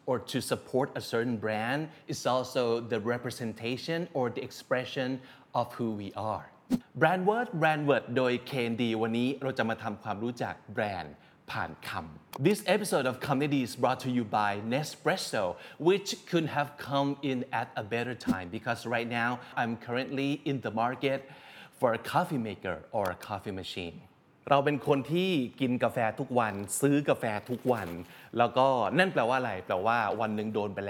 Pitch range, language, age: 115-145 Hz, Thai, 30-49